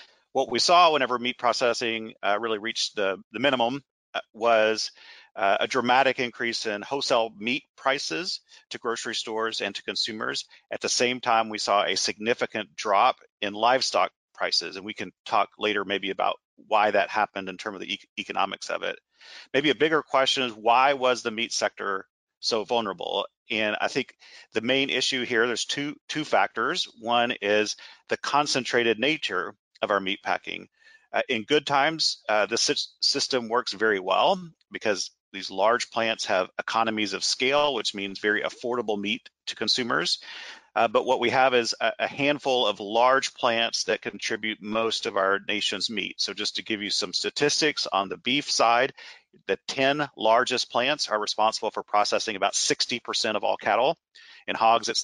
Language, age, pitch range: English, 40-59, 110-135 Hz